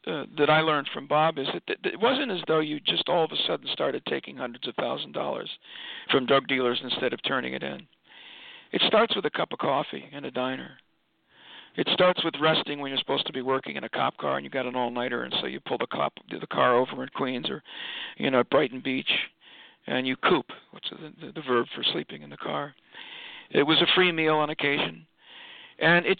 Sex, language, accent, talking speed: male, English, American, 235 wpm